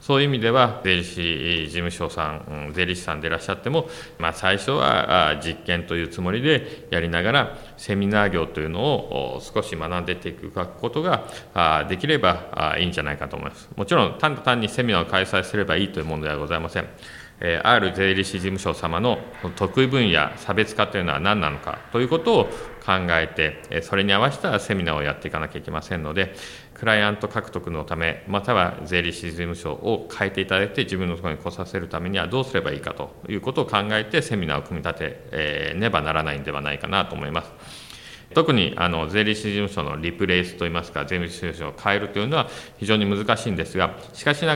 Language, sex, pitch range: Japanese, male, 80-105 Hz